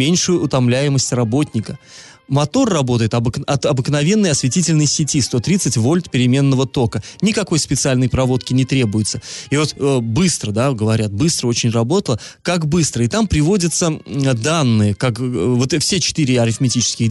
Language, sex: Russian, male